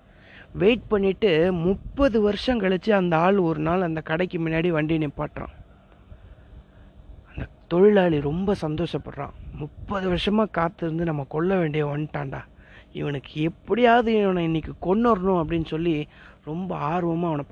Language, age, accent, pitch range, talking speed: Tamil, 30-49, native, 150-190 Hz, 120 wpm